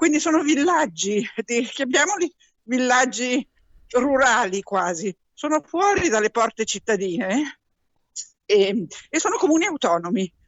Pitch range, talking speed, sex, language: 195-295 Hz, 105 wpm, female, Italian